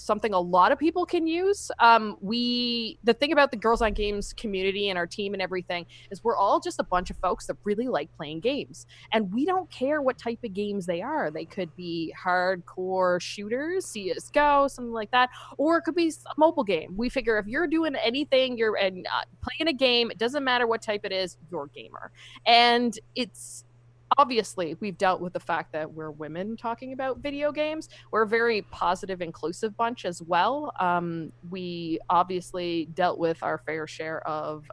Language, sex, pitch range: English, female, 170-245 Hz